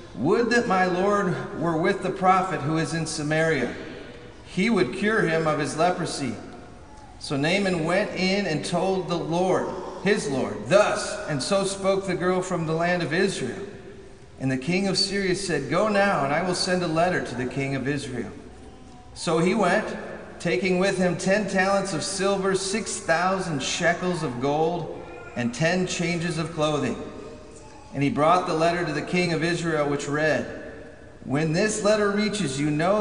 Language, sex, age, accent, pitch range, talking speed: English, male, 40-59, American, 155-195 Hz, 175 wpm